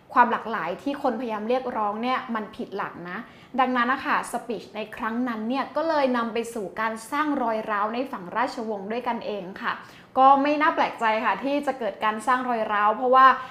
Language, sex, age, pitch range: Thai, female, 20-39, 220-265 Hz